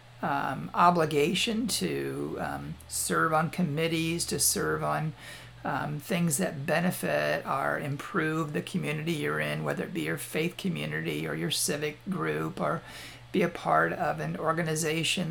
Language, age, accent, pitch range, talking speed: English, 50-69, American, 140-175 Hz, 145 wpm